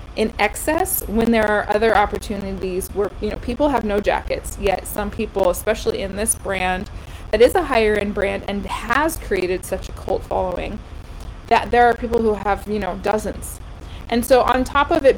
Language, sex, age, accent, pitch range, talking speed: English, female, 20-39, American, 205-230 Hz, 190 wpm